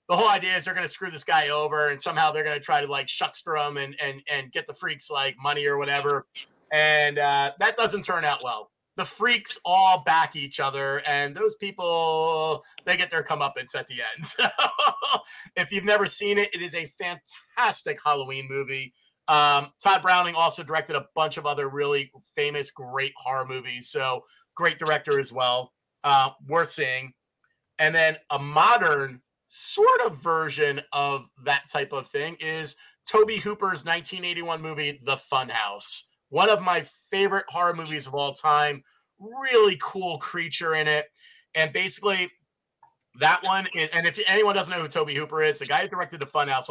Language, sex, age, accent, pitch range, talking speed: English, male, 30-49, American, 140-185 Hz, 185 wpm